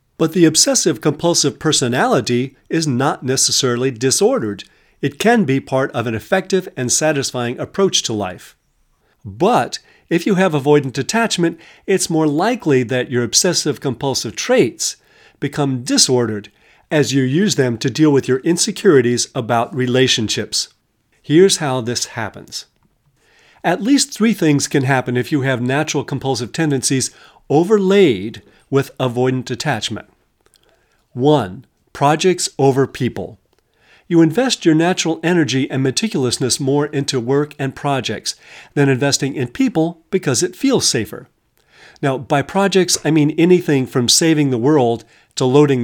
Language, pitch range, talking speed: English, 125-165 Hz, 135 wpm